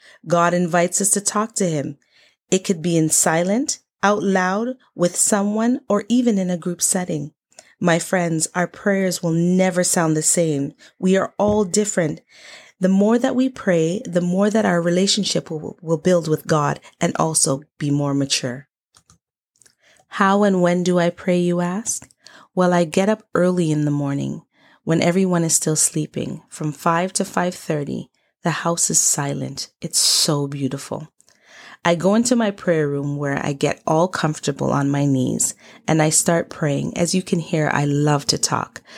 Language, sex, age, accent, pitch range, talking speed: English, female, 30-49, American, 155-190 Hz, 175 wpm